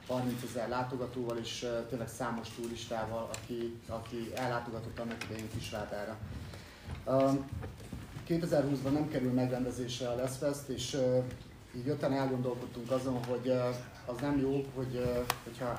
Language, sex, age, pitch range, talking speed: Hungarian, male, 30-49, 115-130 Hz, 125 wpm